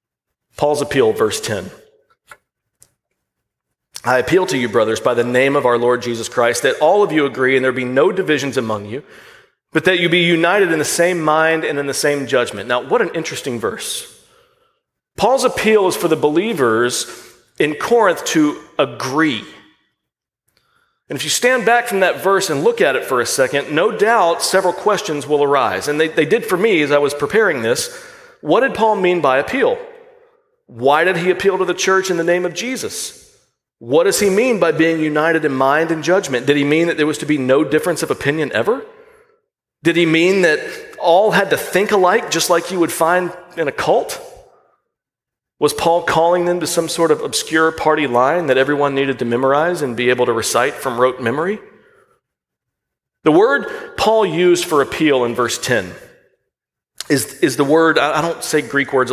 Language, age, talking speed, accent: English, 40-59, 195 wpm, American